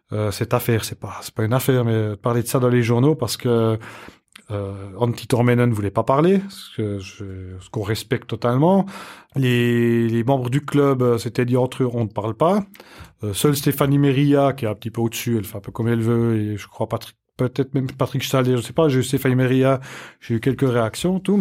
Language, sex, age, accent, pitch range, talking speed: French, male, 30-49, French, 110-140 Hz, 245 wpm